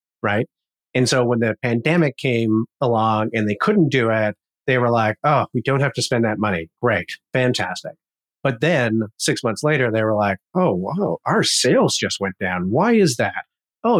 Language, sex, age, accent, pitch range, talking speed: English, male, 30-49, American, 110-145 Hz, 195 wpm